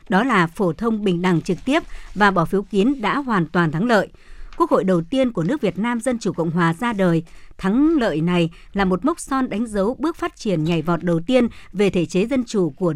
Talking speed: 245 wpm